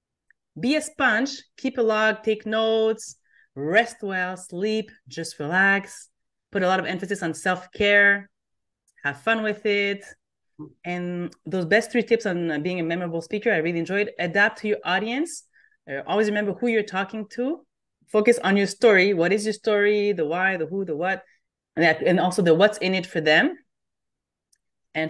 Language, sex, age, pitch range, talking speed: English, female, 30-49, 165-215 Hz, 170 wpm